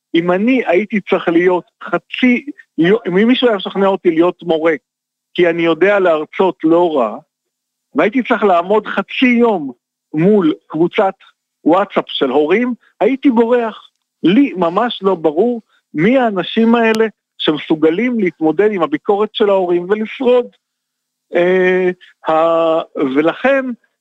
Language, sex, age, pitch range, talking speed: Hebrew, male, 50-69, 165-240 Hz, 120 wpm